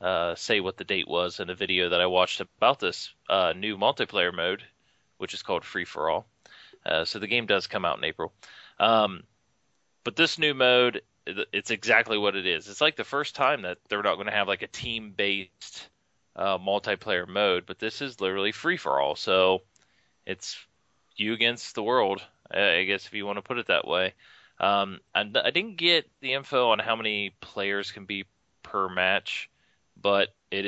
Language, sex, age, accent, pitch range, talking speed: English, male, 20-39, American, 95-115 Hz, 195 wpm